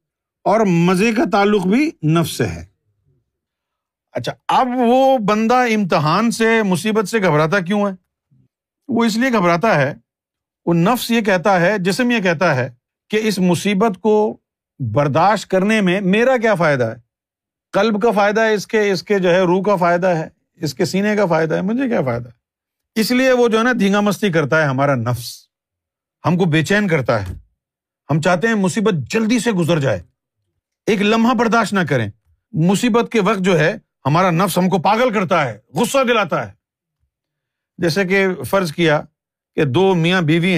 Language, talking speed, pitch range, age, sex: Urdu, 180 wpm, 145-210 Hz, 50-69, male